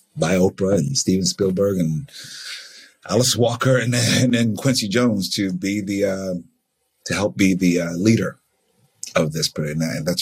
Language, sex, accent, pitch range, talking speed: English, male, American, 80-115 Hz, 165 wpm